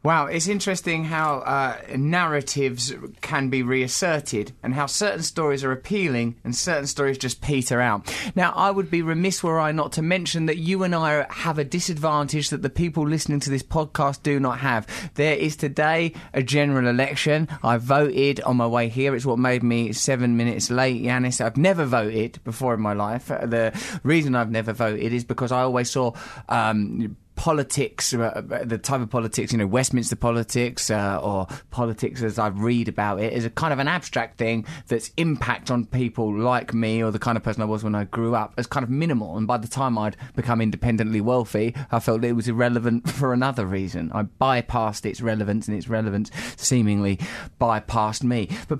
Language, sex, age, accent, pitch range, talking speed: English, male, 20-39, British, 115-150 Hz, 195 wpm